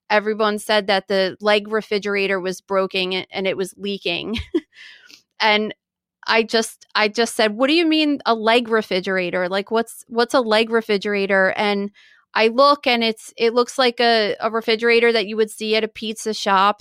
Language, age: English, 30-49